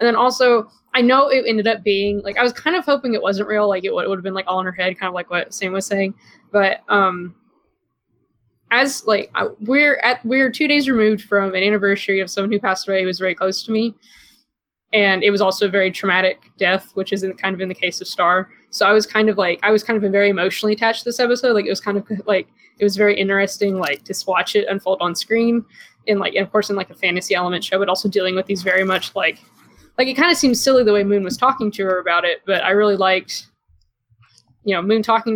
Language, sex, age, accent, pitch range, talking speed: English, female, 20-39, American, 190-220 Hz, 260 wpm